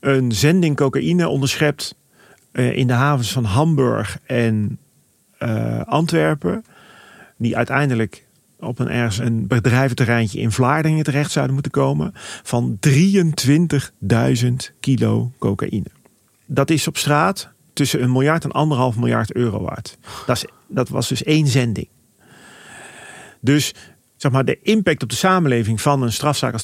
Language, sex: Dutch, male